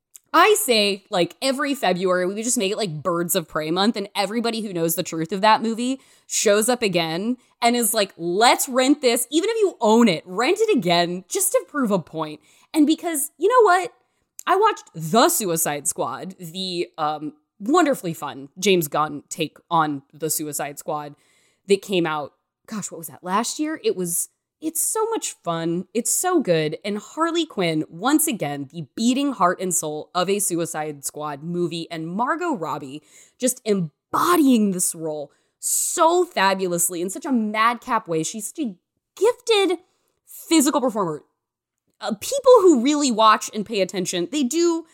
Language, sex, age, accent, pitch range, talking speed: English, female, 20-39, American, 165-265 Hz, 175 wpm